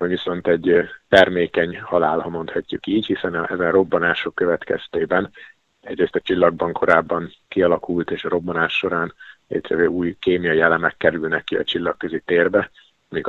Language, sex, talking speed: Hungarian, male, 145 wpm